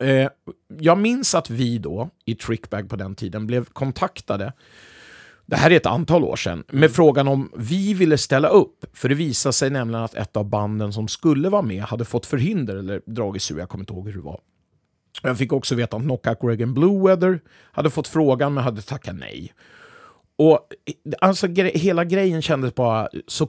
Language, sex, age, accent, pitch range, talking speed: Swedish, male, 40-59, native, 115-155 Hz, 195 wpm